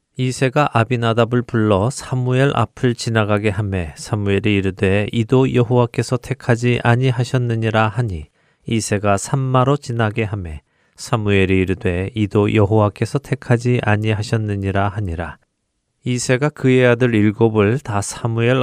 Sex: male